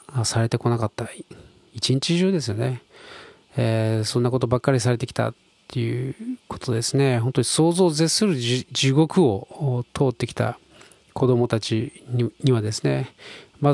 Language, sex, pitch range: Japanese, male, 115-135 Hz